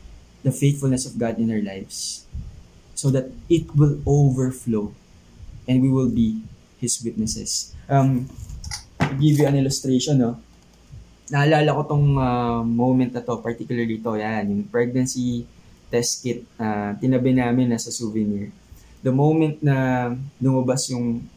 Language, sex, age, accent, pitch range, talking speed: English, male, 20-39, Filipino, 120-155 Hz, 140 wpm